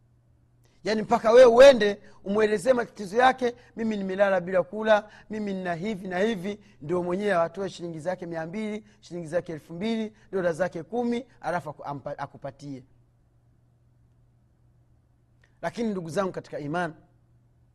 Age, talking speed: 40-59, 120 wpm